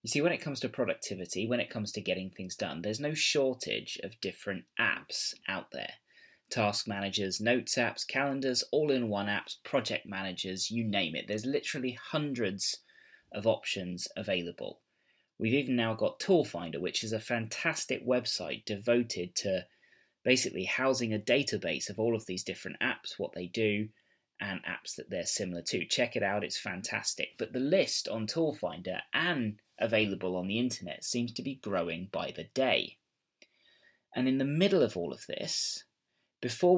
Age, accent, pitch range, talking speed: 20-39, British, 100-125 Hz, 170 wpm